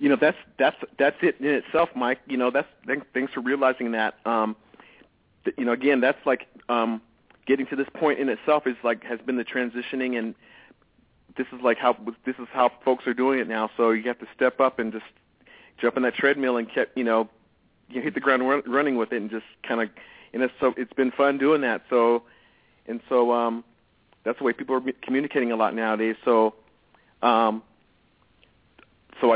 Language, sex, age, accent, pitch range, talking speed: English, male, 40-59, American, 115-130 Hz, 205 wpm